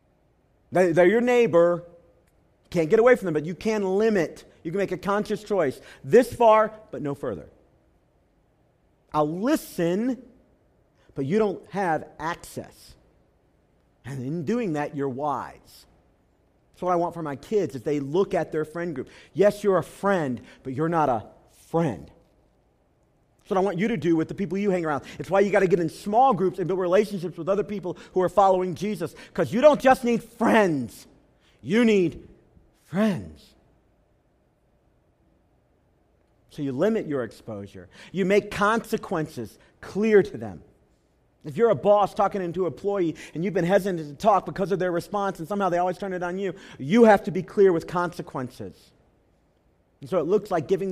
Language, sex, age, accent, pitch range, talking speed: English, male, 40-59, American, 155-205 Hz, 175 wpm